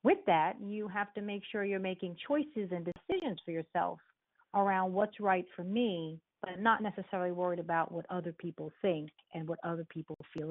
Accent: American